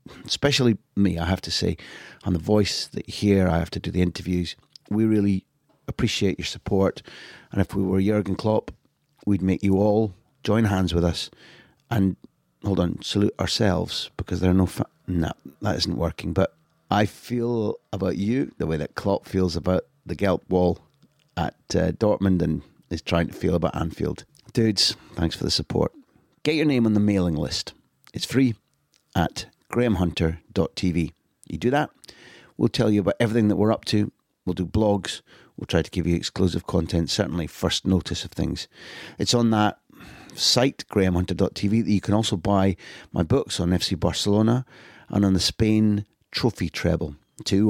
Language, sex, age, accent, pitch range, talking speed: English, male, 30-49, British, 85-105 Hz, 175 wpm